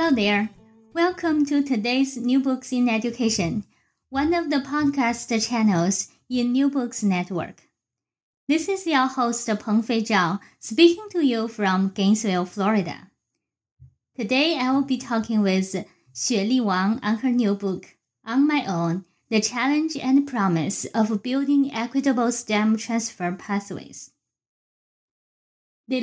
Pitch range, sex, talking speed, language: 200-270 Hz, female, 135 wpm, English